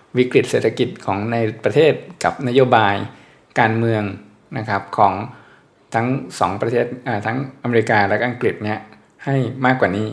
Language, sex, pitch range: Thai, male, 105-130 Hz